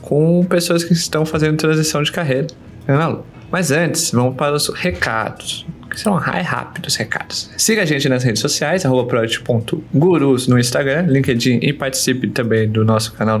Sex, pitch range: male, 125-175 Hz